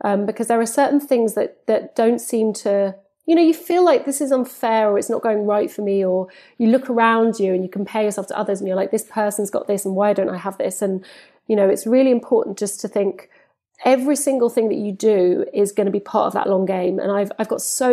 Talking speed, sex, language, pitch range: 265 wpm, female, English, 200-245 Hz